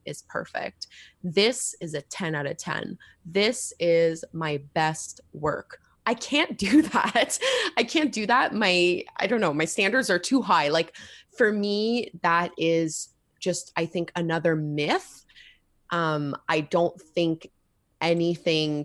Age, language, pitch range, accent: 20-39, English, 160-195 Hz, American